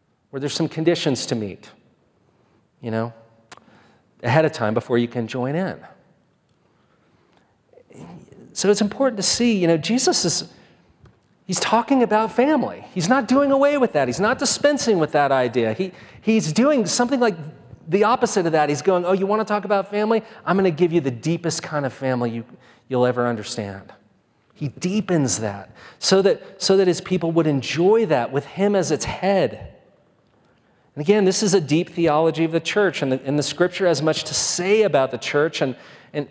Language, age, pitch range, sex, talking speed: English, 40-59, 150-205 Hz, male, 190 wpm